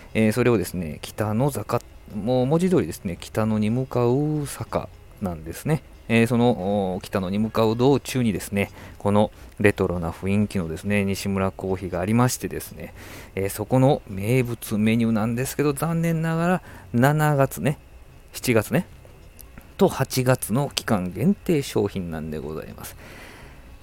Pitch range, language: 100-125 Hz, Japanese